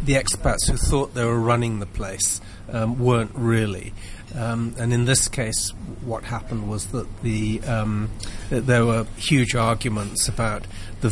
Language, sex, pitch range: English, male, 105-125 Hz